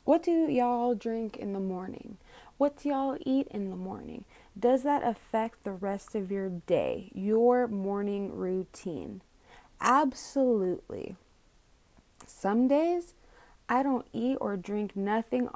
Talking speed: 130 wpm